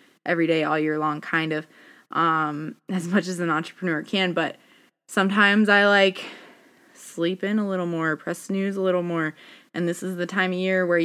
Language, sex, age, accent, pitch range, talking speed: English, female, 20-39, American, 165-215 Hz, 195 wpm